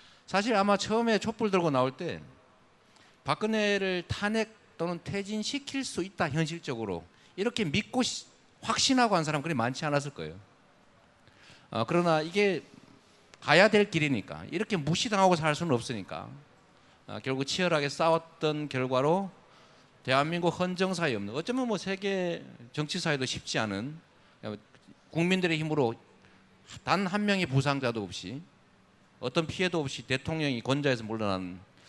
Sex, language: male, Korean